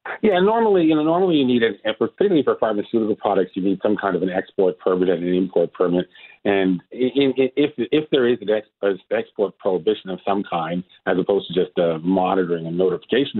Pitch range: 90-110 Hz